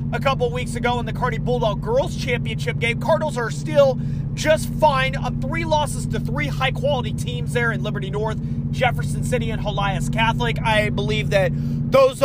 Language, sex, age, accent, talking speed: English, male, 30-49, American, 175 wpm